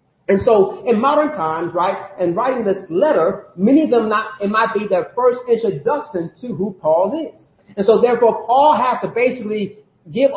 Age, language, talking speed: 40-59, English, 185 wpm